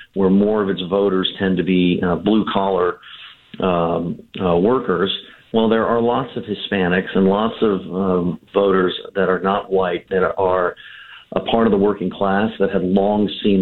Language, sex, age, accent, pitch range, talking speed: English, male, 50-69, American, 95-105 Hz, 180 wpm